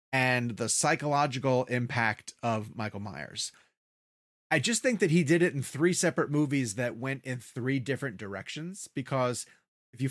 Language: English